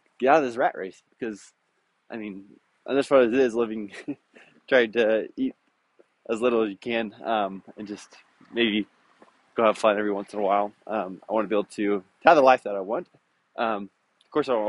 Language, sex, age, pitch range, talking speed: English, male, 20-39, 105-125 Hz, 215 wpm